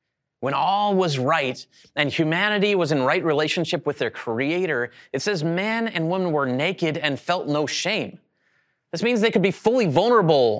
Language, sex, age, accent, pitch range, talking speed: English, male, 30-49, American, 145-200 Hz, 175 wpm